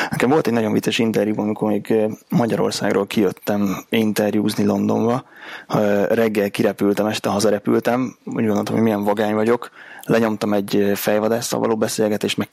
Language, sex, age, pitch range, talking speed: Hungarian, male, 20-39, 105-115 Hz, 130 wpm